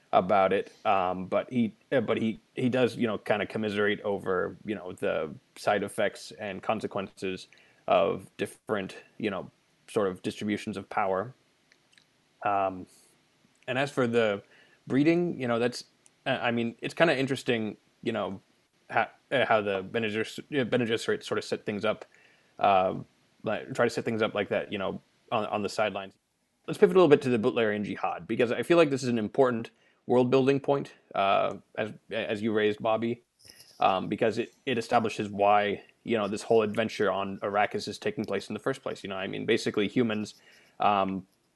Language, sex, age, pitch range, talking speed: English, male, 20-39, 105-125 Hz, 180 wpm